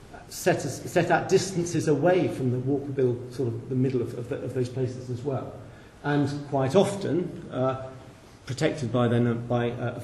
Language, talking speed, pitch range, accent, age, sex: English, 185 wpm, 120-150 Hz, British, 40-59, male